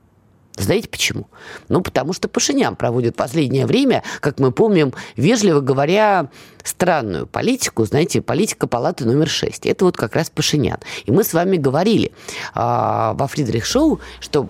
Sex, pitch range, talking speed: female, 130-190 Hz, 145 wpm